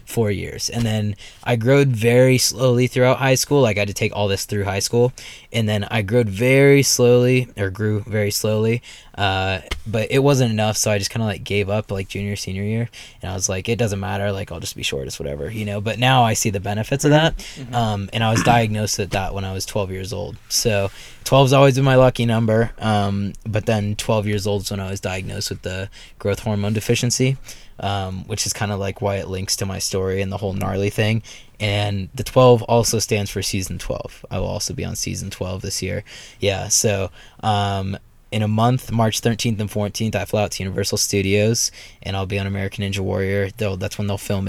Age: 20-39